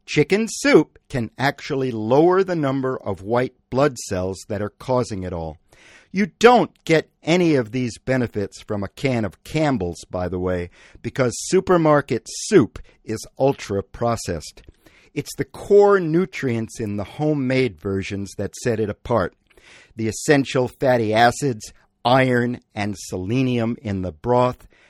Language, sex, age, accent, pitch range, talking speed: English, male, 50-69, American, 105-145 Hz, 140 wpm